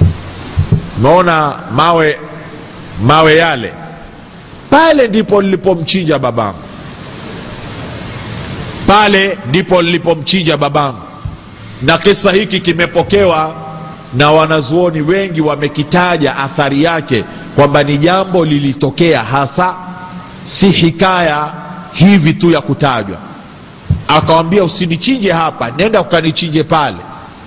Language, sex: Swahili, male